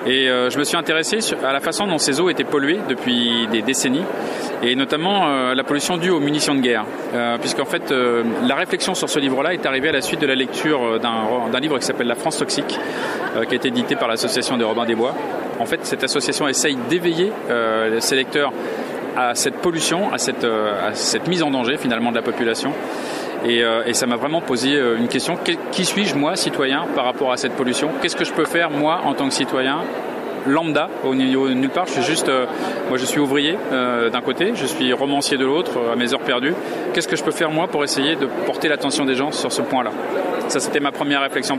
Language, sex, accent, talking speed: French, male, French, 235 wpm